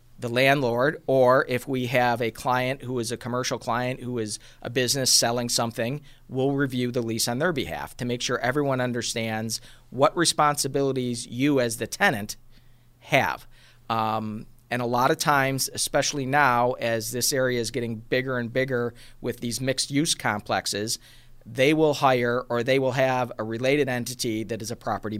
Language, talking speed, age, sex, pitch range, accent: English, 170 wpm, 40-59, male, 115-130 Hz, American